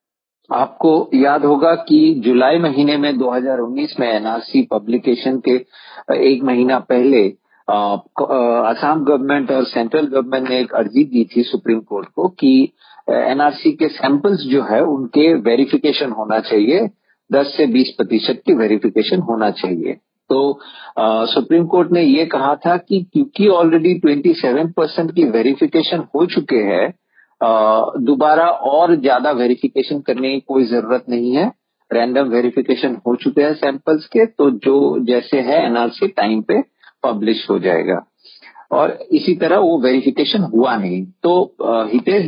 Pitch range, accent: 125-170 Hz, native